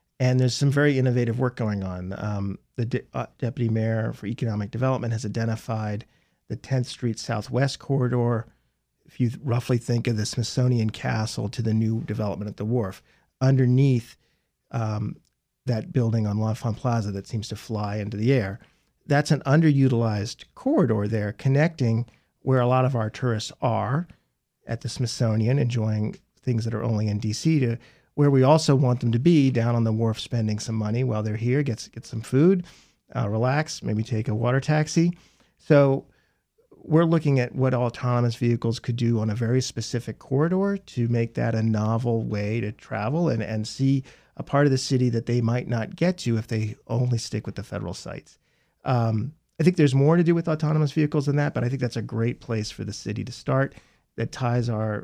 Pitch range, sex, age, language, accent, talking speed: 110-135 Hz, male, 40-59, English, American, 195 wpm